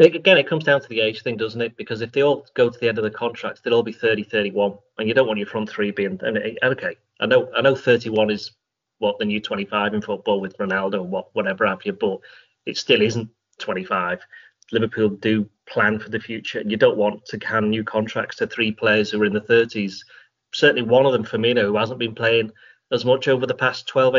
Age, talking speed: 30-49, 240 wpm